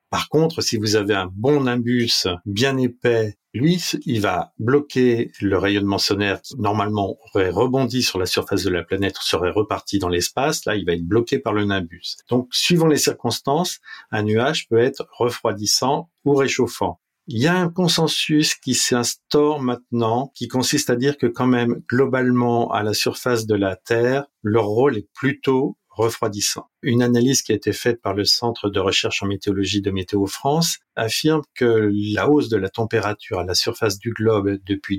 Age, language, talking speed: 50-69, French, 180 wpm